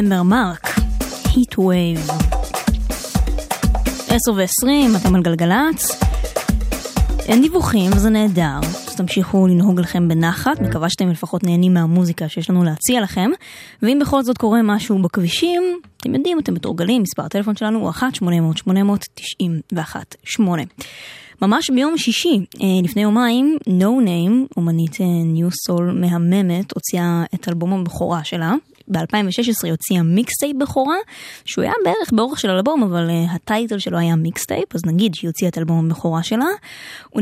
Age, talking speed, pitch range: 20-39, 130 wpm, 175-230 Hz